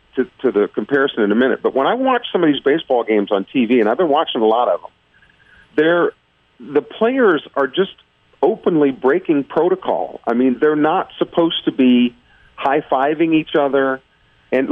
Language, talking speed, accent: English, 185 wpm, American